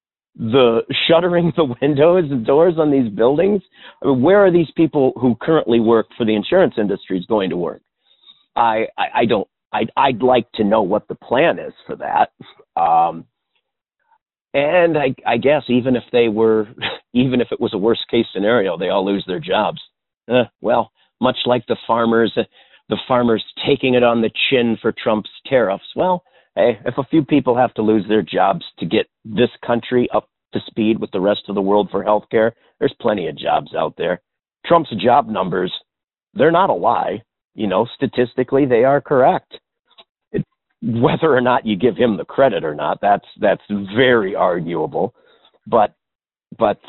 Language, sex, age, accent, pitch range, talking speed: English, male, 50-69, American, 110-145 Hz, 180 wpm